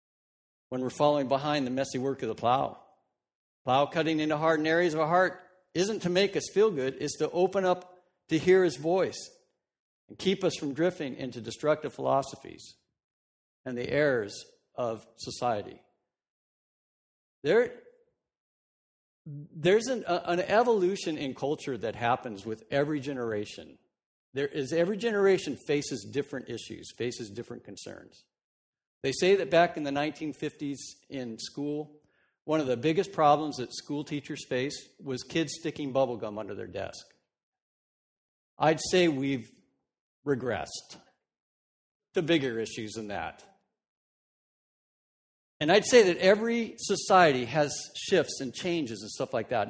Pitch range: 130-180 Hz